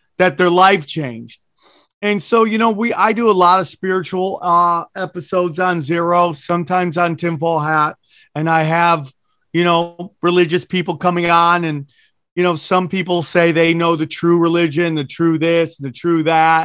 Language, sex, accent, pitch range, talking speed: English, male, American, 165-190 Hz, 175 wpm